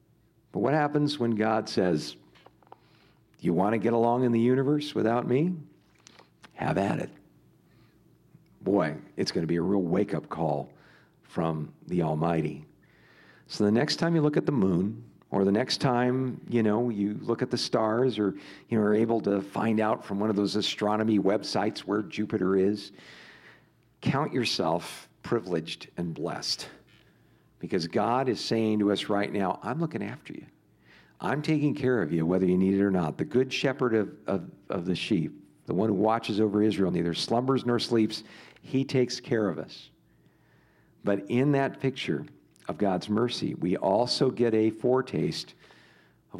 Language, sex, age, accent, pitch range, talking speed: English, male, 50-69, American, 100-125 Hz, 165 wpm